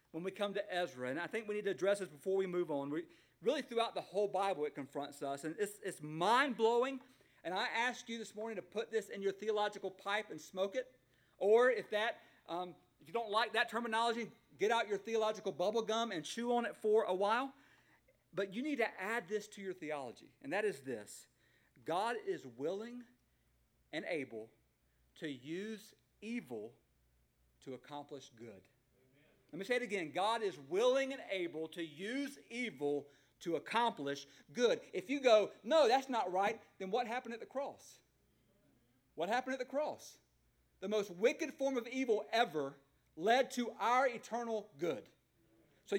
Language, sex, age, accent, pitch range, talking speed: English, male, 50-69, American, 175-245 Hz, 185 wpm